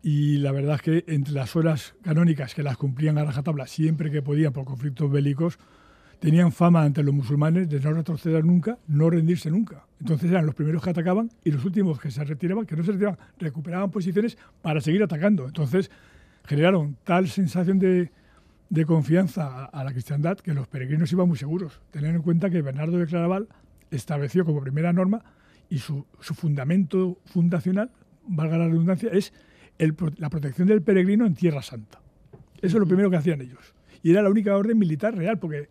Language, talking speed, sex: Spanish, 190 wpm, male